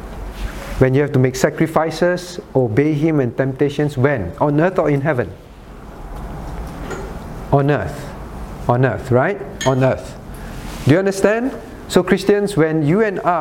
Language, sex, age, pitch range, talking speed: English, male, 50-69, 125-175 Hz, 140 wpm